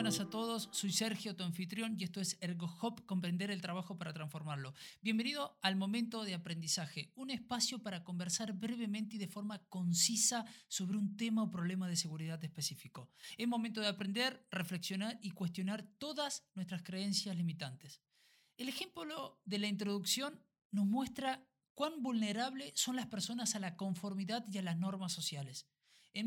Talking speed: 160 wpm